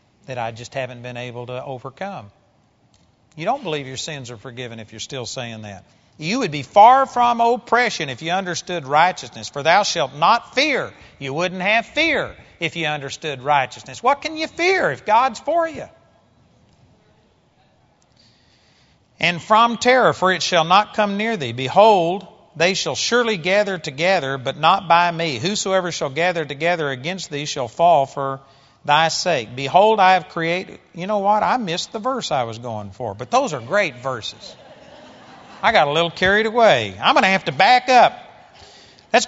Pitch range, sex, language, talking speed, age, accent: 145-210 Hz, male, English, 175 wpm, 40-59, American